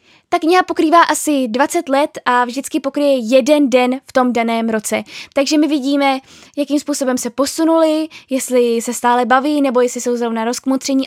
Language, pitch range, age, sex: Czech, 235-280 Hz, 10-29, female